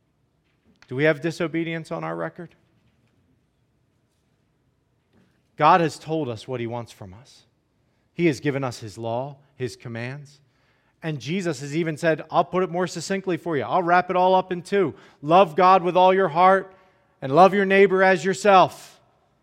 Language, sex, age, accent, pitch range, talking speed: English, male, 40-59, American, 120-185 Hz, 170 wpm